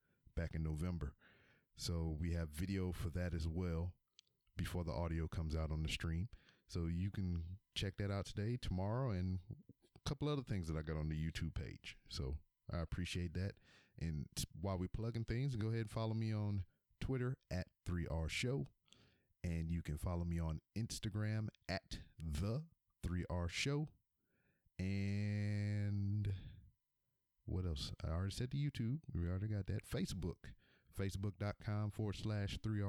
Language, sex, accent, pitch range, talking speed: English, male, American, 85-105 Hz, 150 wpm